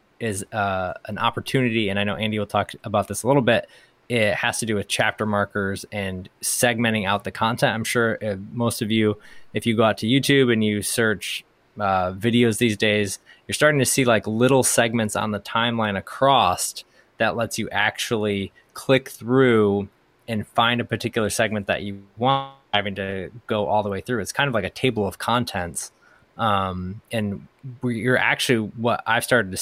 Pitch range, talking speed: 105-130 Hz, 190 wpm